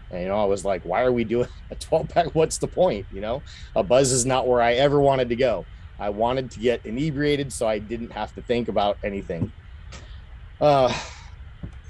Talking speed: 210 wpm